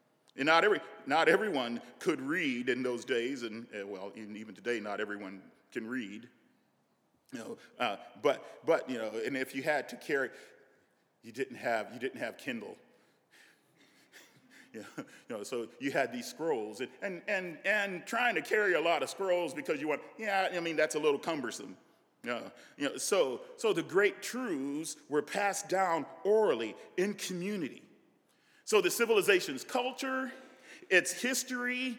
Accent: American